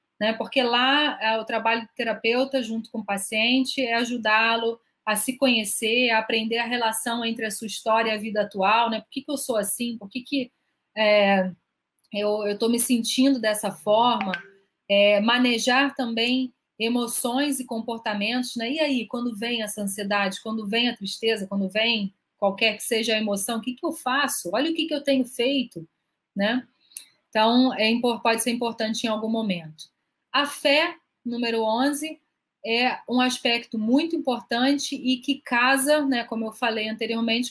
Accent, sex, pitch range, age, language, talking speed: Brazilian, female, 220-255 Hz, 30-49, Portuguese, 165 wpm